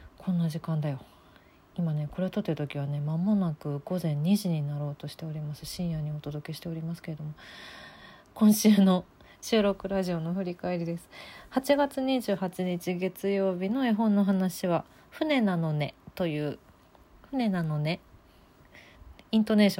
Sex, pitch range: female, 150-200 Hz